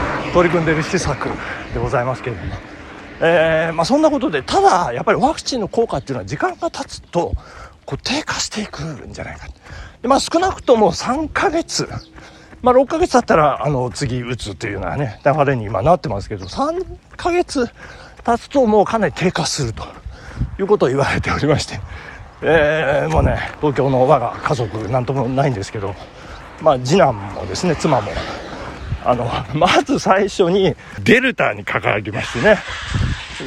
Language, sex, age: Japanese, male, 40-59